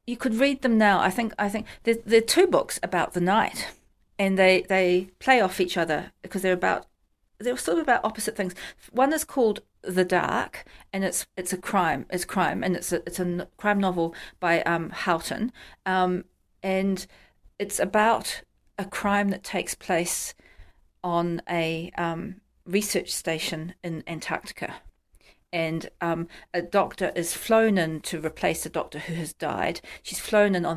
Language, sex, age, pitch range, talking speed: English, female, 40-59, 160-195 Hz, 170 wpm